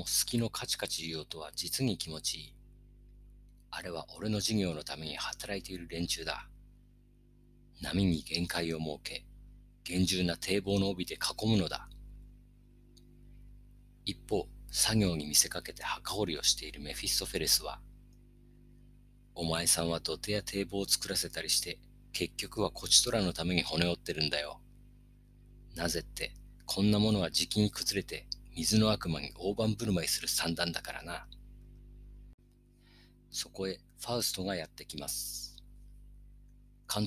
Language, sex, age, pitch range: Japanese, male, 40-59, 85-105 Hz